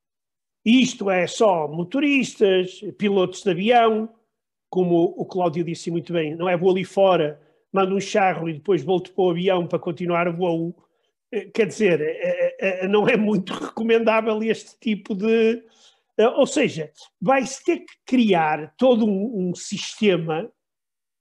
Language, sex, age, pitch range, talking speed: Portuguese, male, 50-69, 180-230 Hz, 140 wpm